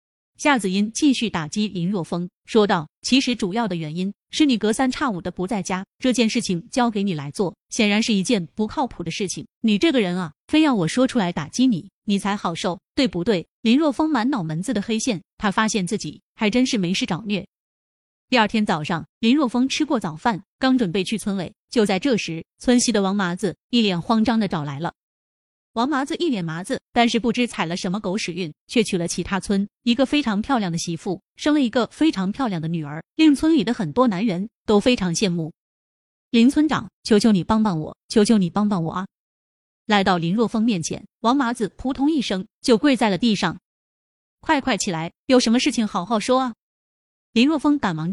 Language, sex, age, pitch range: Chinese, female, 30-49, 180-245 Hz